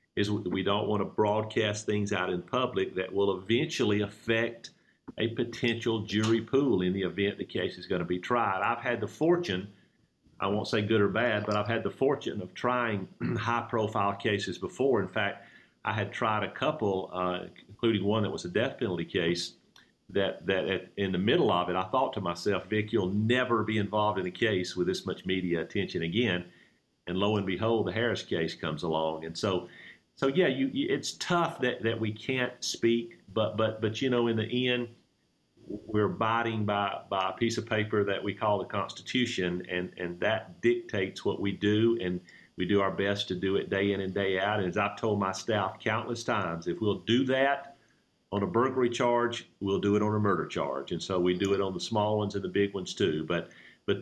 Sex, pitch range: male, 95-115 Hz